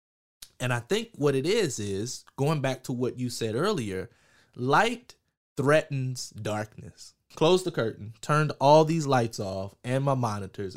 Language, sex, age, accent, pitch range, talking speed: English, male, 20-39, American, 110-140 Hz, 155 wpm